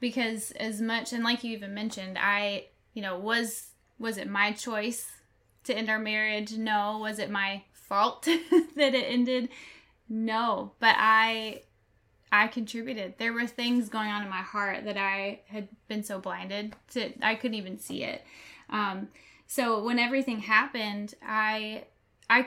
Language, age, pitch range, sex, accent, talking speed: English, 10-29, 205-240 Hz, female, American, 160 wpm